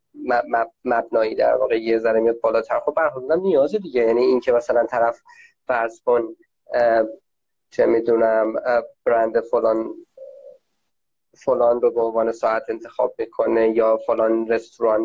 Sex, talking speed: male, 130 wpm